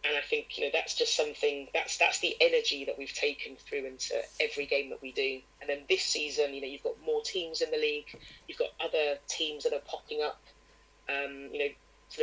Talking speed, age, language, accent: 230 wpm, 20-39, English, British